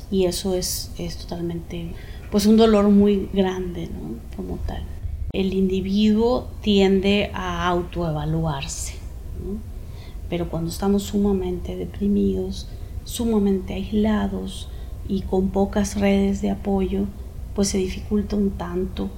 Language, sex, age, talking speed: Spanish, female, 30-49, 115 wpm